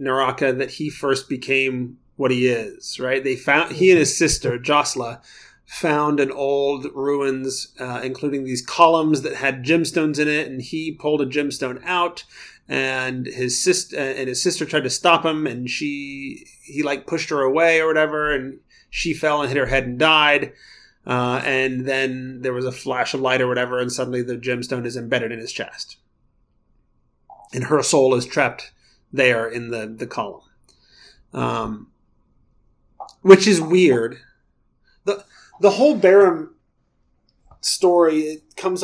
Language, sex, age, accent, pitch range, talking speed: English, male, 30-49, American, 130-170 Hz, 160 wpm